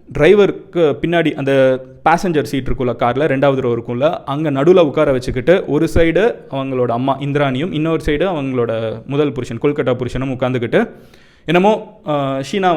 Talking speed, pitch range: 135 wpm, 125-165 Hz